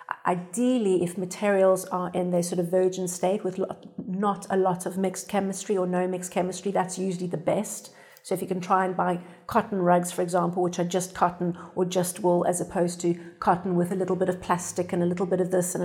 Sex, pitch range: female, 175-190 Hz